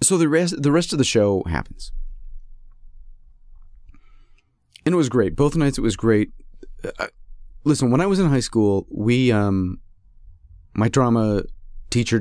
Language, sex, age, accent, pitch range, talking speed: English, male, 30-49, American, 105-150 Hz, 150 wpm